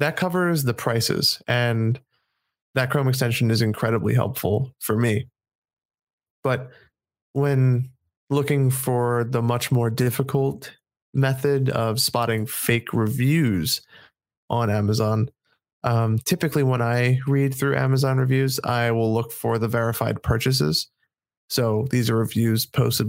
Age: 20-39